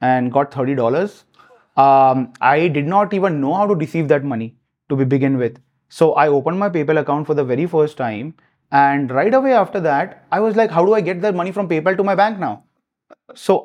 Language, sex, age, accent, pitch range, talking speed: English, male, 30-49, Indian, 140-200 Hz, 215 wpm